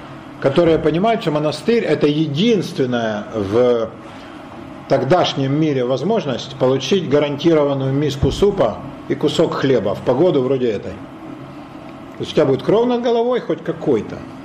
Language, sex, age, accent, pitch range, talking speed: Russian, male, 50-69, native, 140-200 Hz, 120 wpm